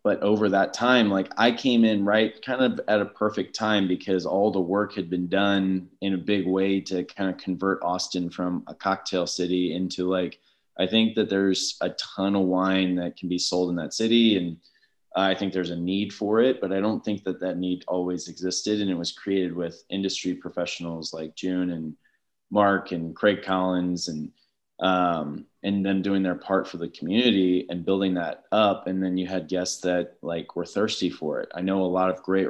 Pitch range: 90-100 Hz